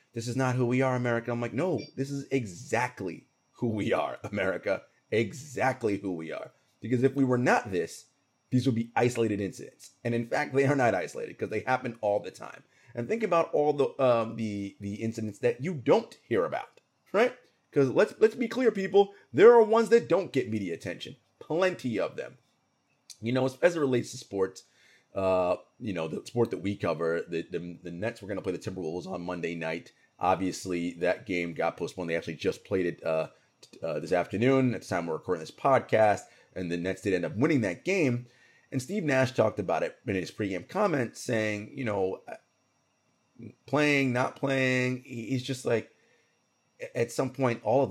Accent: American